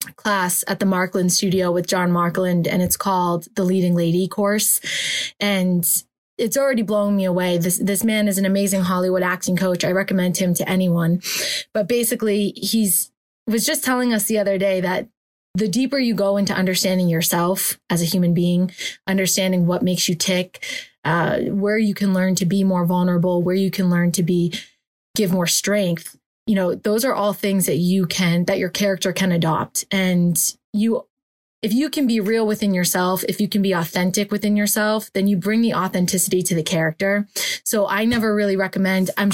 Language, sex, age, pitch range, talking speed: English, female, 20-39, 180-205 Hz, 190 wpm